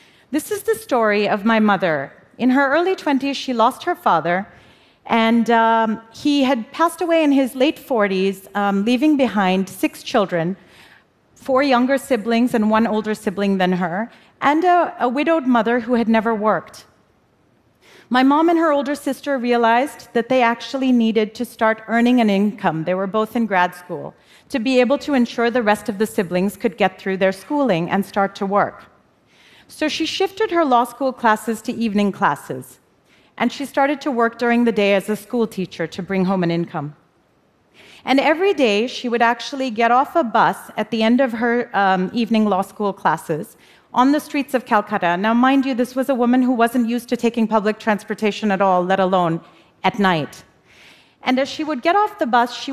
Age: 40-59